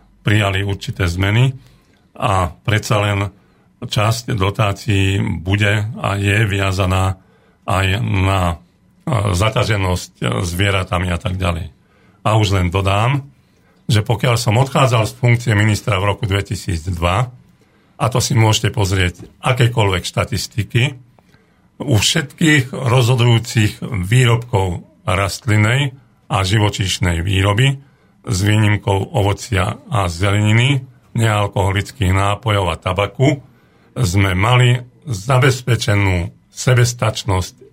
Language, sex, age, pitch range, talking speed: Slovak, male, 50-69, 95-120 Hz, 95 wpm